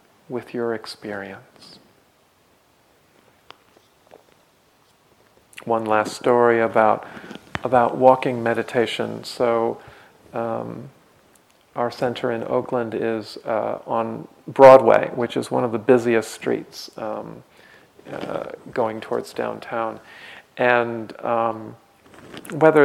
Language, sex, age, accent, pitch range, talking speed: English, male, 40-59, American, 115-135 Hz, 90 wpm